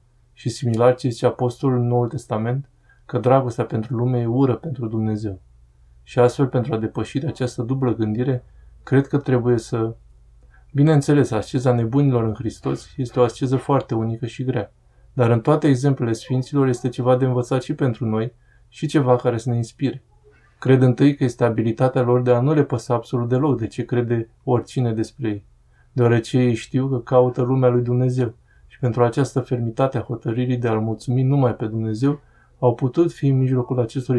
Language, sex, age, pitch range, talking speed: Romanian, male, 20-39, 115-130 Hz, 180 wpm